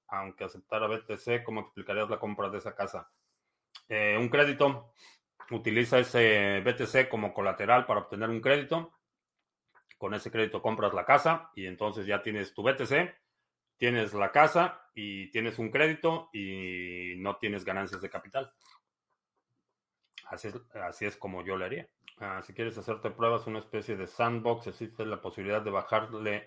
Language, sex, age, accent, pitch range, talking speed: Spanish, male, 30-49, Mexican, 95-120 Hz, 155 wpm